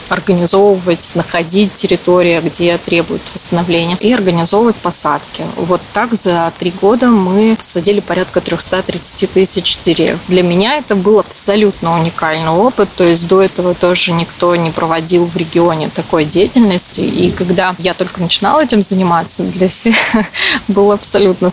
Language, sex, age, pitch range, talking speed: Russian, female, 20-39, 175-205 Hz, 140 wpm